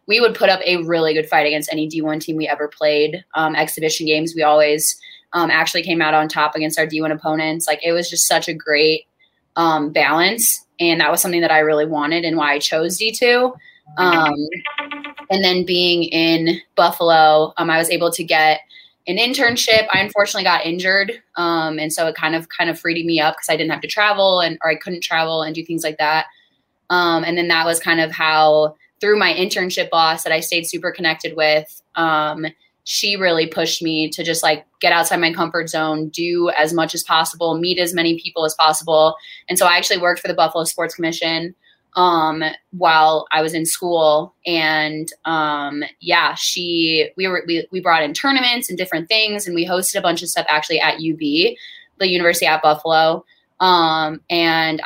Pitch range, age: 155-175 Hz, 20-39